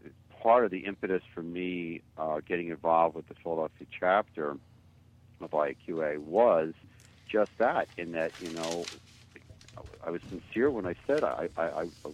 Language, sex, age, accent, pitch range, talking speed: English, male, 60-79, American, 85-105 Hz, 155 wpm